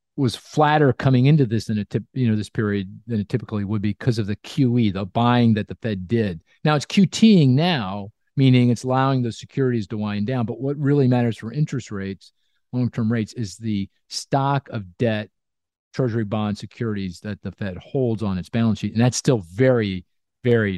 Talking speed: 205 wpm